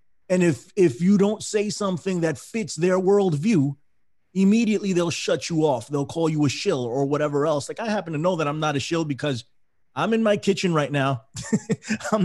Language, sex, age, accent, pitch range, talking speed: English, male, 30-49, American, 135-180 Hz, 205 wpm